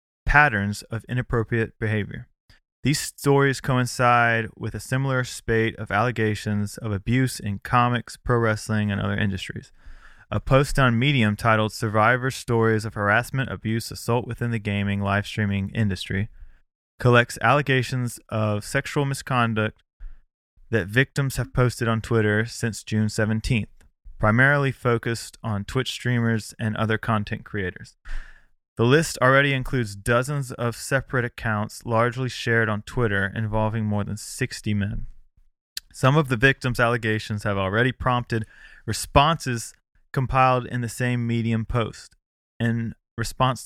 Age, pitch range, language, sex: 20-39, 110-125 Hz, English, male